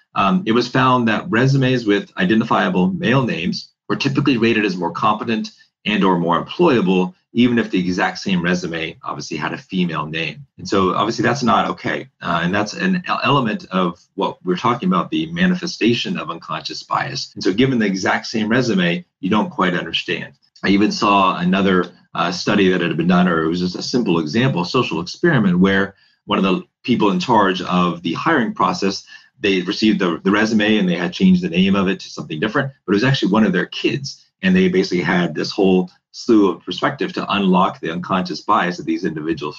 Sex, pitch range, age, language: male, 95-150 Hz, 40-59, English